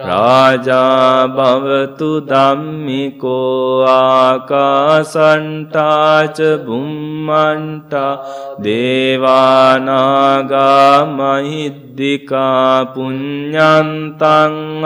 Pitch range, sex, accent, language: 130-150 Hz, male, Indian, English